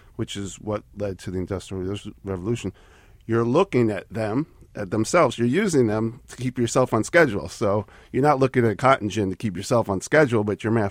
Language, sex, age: English, male, 40-59